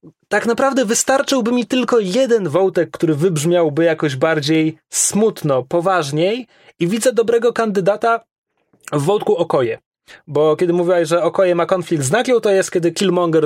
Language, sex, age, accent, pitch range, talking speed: Polish, male, 30-49, native, 155-200 Hz, 145 wpm